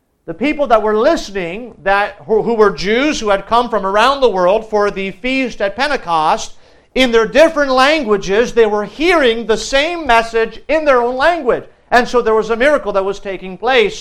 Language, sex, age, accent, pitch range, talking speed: English, male, 50-69, American, 205-255 Hz, 195 wpm